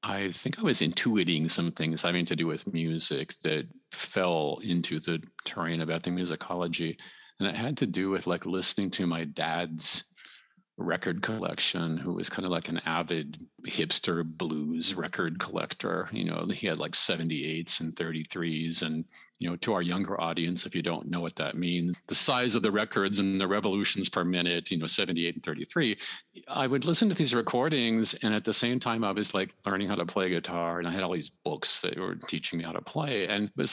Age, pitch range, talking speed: 40-59, 85-105 Hz, 205 wpm